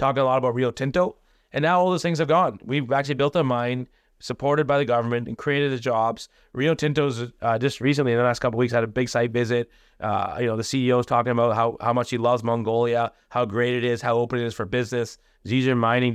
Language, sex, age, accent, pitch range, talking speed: English, male, 30-49, American, 115-135 Hz, 250 wpm